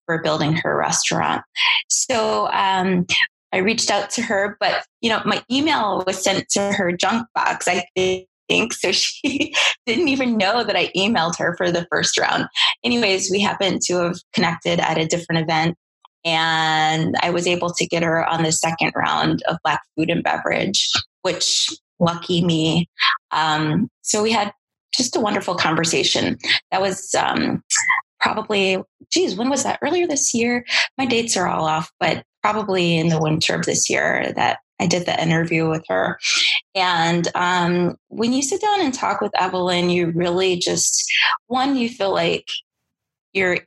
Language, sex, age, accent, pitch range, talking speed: English, female, 20-39, American, 170-235 Hz, 170 wpm